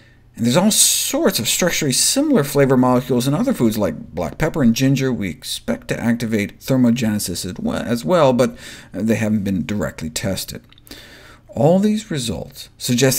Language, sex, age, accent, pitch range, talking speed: English, male, 50-69, American, 115-150 Hz, 155 wpm